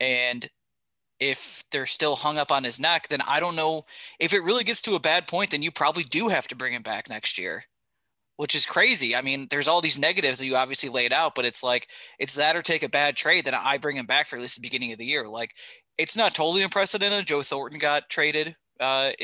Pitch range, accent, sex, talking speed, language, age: 125-160 Hz, American, male, 245 wpm, English, 20-39